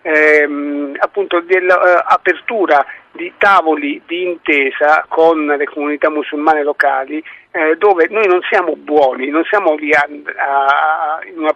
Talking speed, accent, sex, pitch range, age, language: 115 wpm, native, male, 150-190 Hz, 50-69, Italian